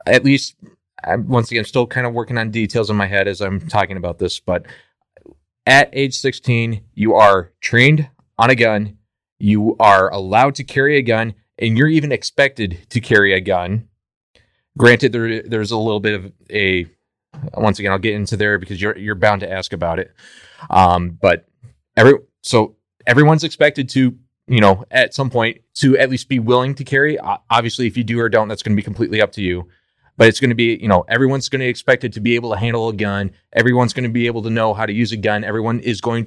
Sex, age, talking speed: male, 30-49, 220 wpm